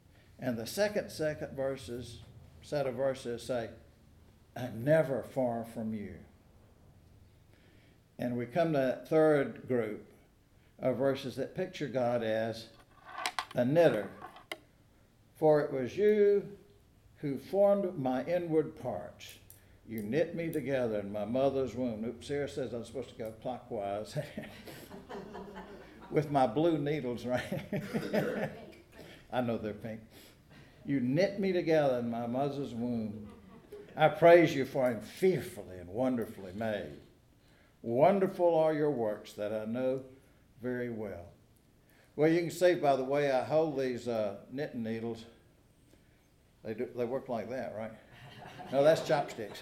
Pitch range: 115-155 Hz